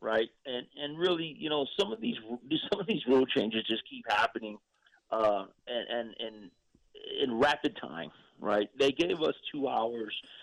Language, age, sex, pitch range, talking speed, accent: English, 30-49, male, 115-140 Hz, 175 wpm, American